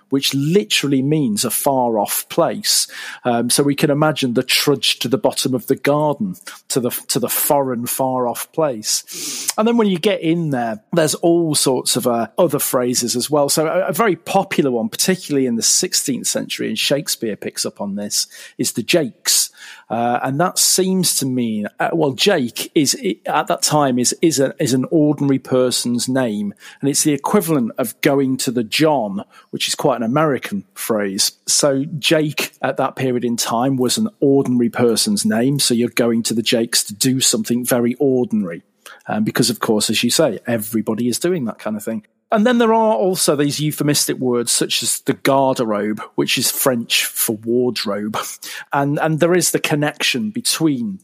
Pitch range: 120-160 Hz